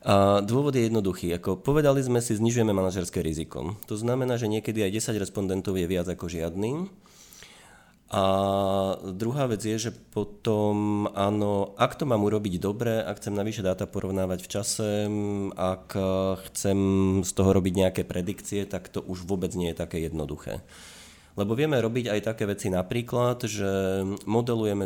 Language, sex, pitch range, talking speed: Slovak, male, 90-105 Hz, 155 wpm